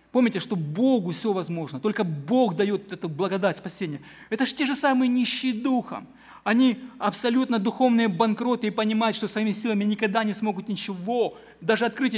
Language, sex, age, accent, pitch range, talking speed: Ukrainian, male, 40-59, native, 215-260 Hz, 165 wpm